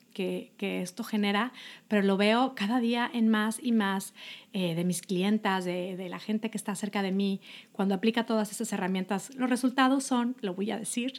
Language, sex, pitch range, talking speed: Spanish, female, 210-260 Hz, 205 wpm